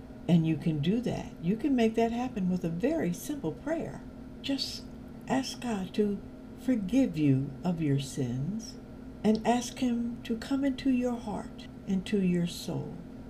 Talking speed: 160 wpm